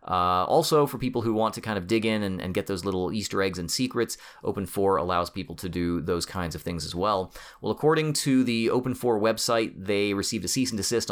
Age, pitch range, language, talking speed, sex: 30-49, 90-115 Hz, English, 245 wpm, male